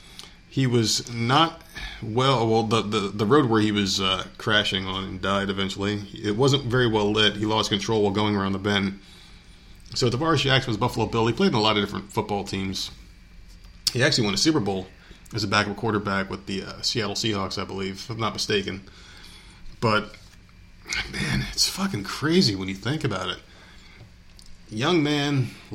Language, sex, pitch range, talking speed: English, male, 100-120 Hz, 185 wpm